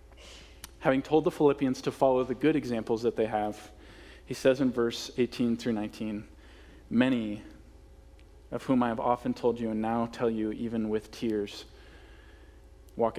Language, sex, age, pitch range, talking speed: English, male, 20-39, 75-115 Hz, 160 wpm